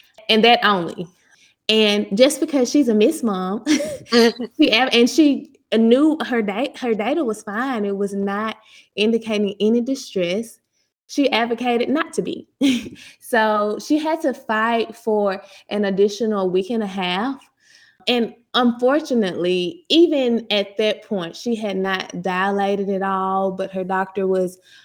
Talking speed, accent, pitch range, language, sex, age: 140 wpm, American, 195-255 Hz, English, female, 20-39